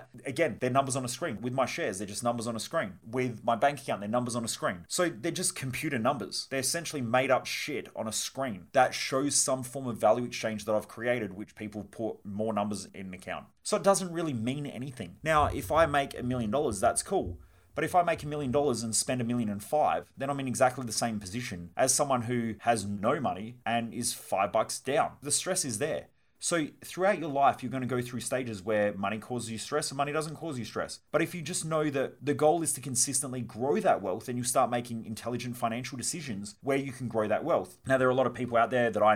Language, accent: English, Australian